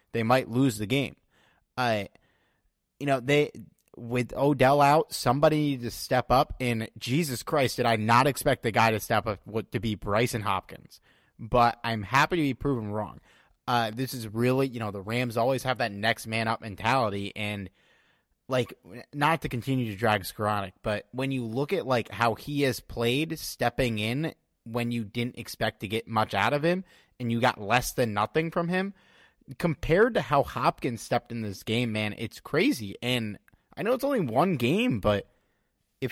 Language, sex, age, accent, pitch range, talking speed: English, male, 20-39, American, 115-165 Hz, 190 wpm